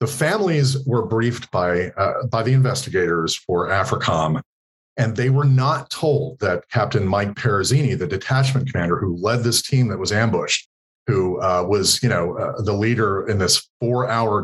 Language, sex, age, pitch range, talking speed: English, male, 40-59, 100-130 Hz, 170 wpm